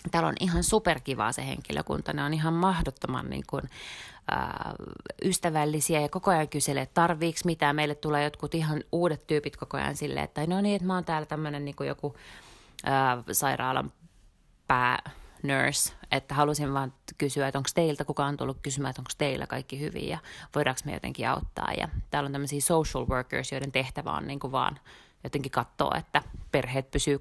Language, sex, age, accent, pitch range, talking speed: Finnish, female, 30-49, native, 135-160 Hz, 180 wpm